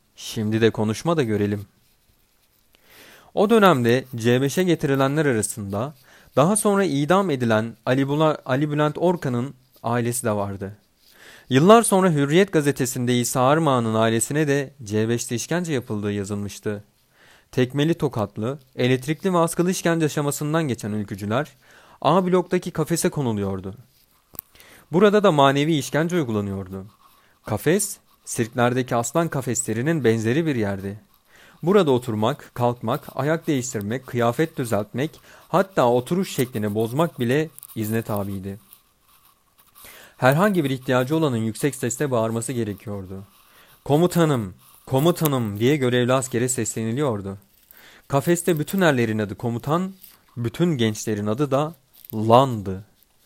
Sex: male